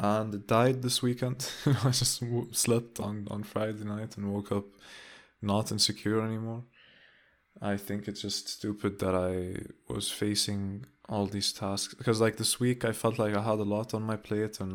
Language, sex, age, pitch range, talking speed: English, male, 20-39, 100-115 Hz, 180 wpm